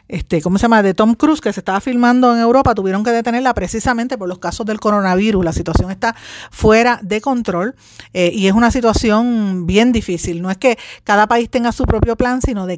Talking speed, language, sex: 215 wpm, Spanish, female